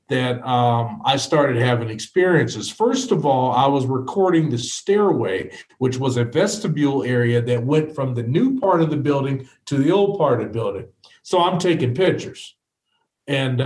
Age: 50-69